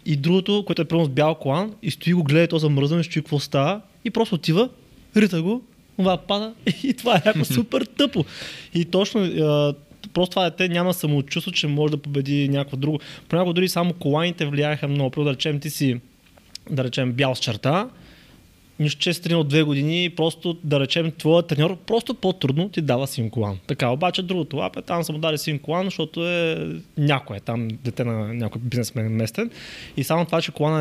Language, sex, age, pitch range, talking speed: Bulgarian, male, 20-39, 135-180 Hz, 195 wpm